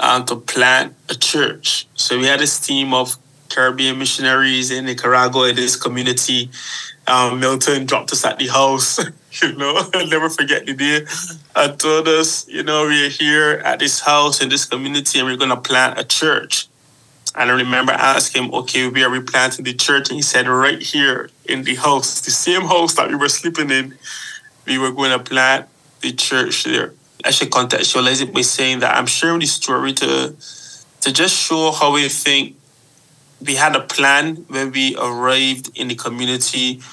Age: 20-39